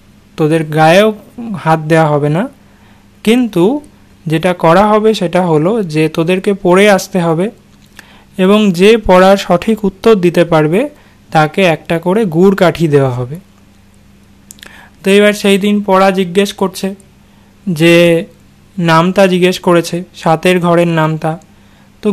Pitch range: 160-200 Hz